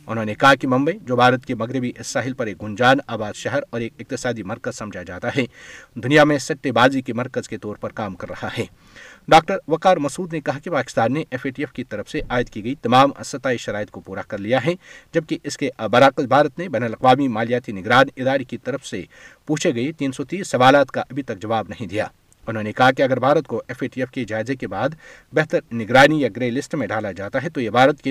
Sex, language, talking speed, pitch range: male, Urdu, 245 wpm, 120-145 Hz